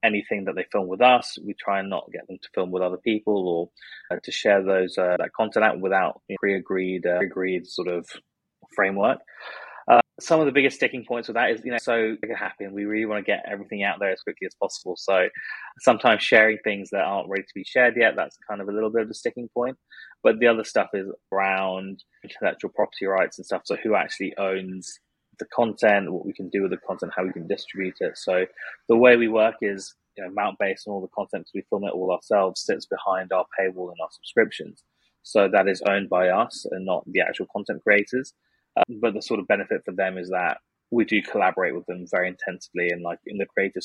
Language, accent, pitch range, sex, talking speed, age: English, British, 90-110 Hz, male, 235 wpm, 20-39